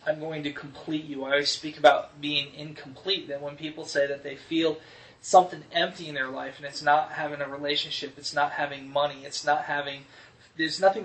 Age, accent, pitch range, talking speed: 20-39, American, 145-160 Hz, 205 wpm